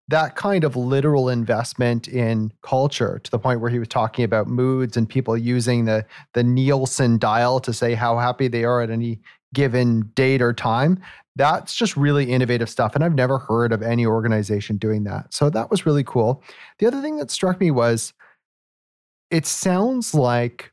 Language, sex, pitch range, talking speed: English, male, 115-145 Hz, 185 wpm